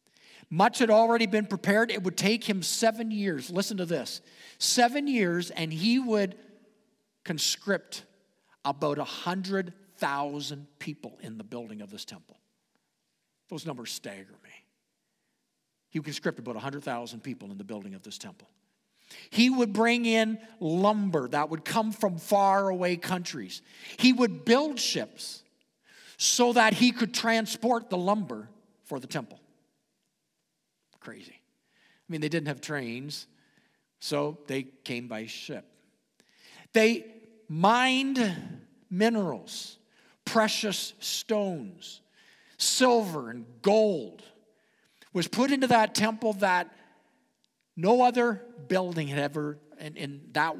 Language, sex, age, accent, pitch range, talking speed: English, male, 50-69, American, 145-220 Hz, 125 wpm